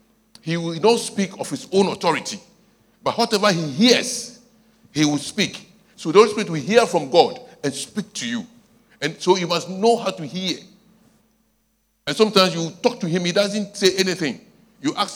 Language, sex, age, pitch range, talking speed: English, male, 60-79, 165-225 Hz, 185 wpm